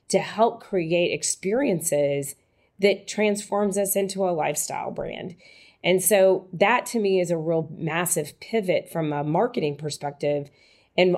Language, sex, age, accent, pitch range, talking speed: English, female, 30-49, American, 155-185 Hz, 140 wpm